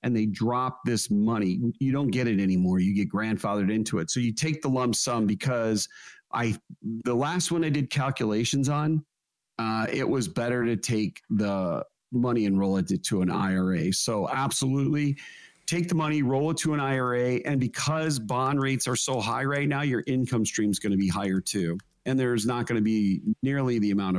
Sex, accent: male, American